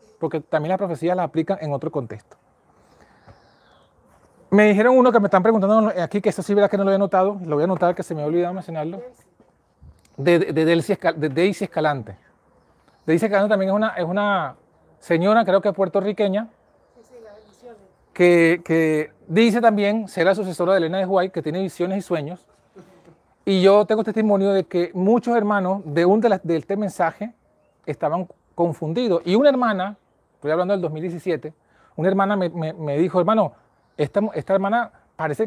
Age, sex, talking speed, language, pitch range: 30-49, male, 175 wpm, Spanish, 165-205 Hz